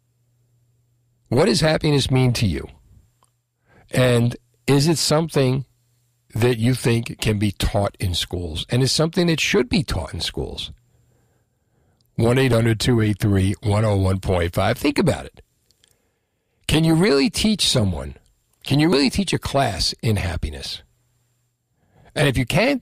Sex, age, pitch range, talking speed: male, 60-79, 105-135 Hz, 125 wpm